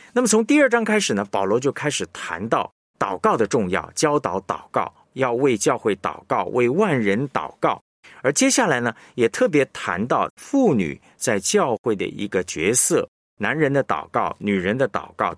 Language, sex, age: Chinese, male, 50-69